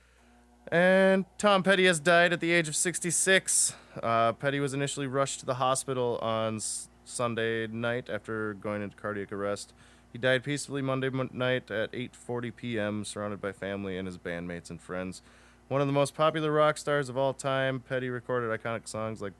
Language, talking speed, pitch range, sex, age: English, 175 wpm, 100-130 Hz, male, 20-39